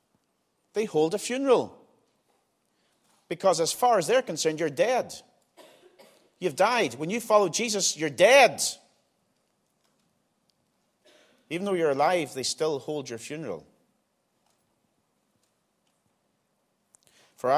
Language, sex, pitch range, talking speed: English, male, 115-160 Hz, 100 wpm